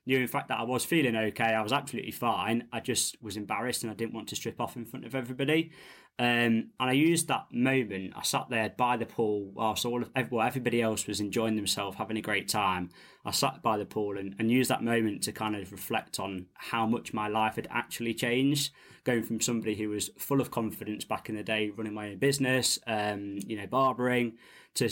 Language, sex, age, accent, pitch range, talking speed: English, male, 20-39, British, 105-125 Hz, 230 wpm